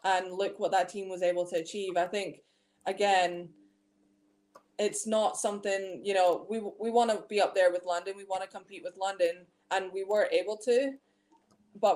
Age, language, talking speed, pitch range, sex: 20-39, English, 190 wpm, 175-205 Hz, female